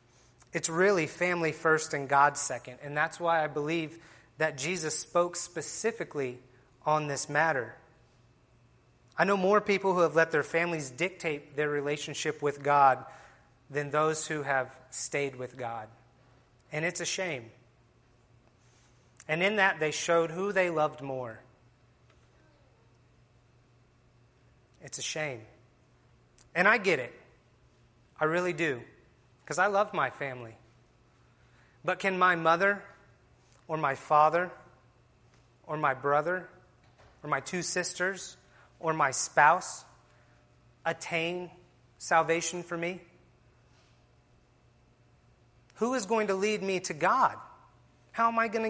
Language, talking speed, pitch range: English, 125 wpm, 125-175 Hz